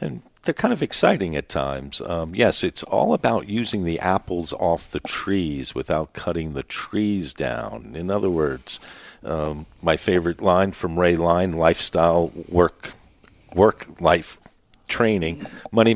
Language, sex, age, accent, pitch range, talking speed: English, male, 50-69, American, 80-95 Hz, 145 wpm